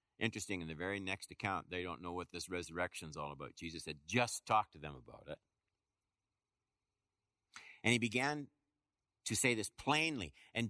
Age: 60-79